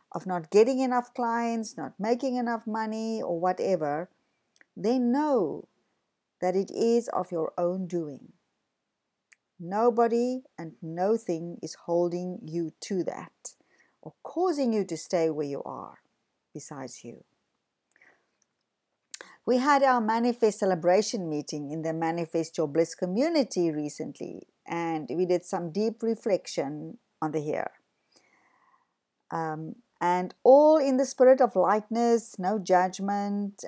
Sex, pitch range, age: female, 170-245 Hz, 50-69